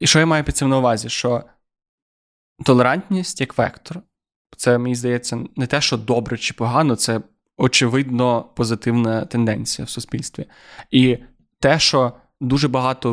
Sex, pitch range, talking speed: male, 120-135 Hz, 145 wpm